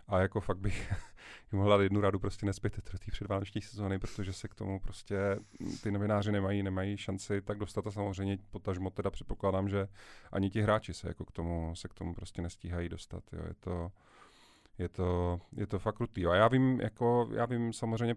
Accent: native